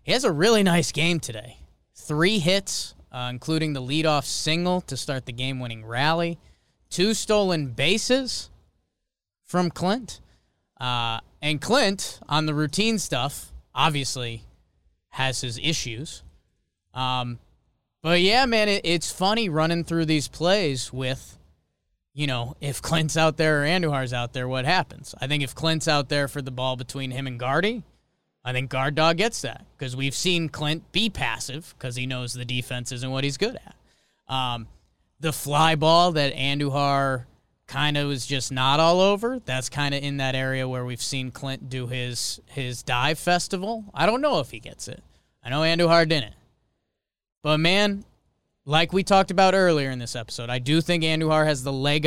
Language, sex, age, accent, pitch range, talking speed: English, male, 20-39, American, 125-165 Hz, 175 wpm